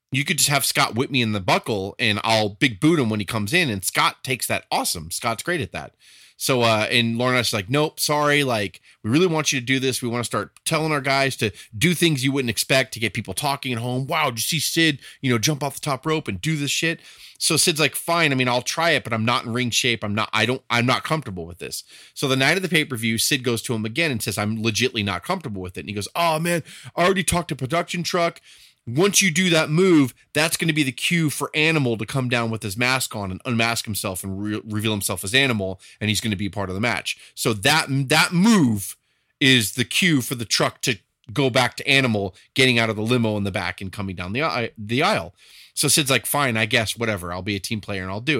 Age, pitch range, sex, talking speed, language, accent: 30-49, 110-150 Hz, male, 265 wpm, English, American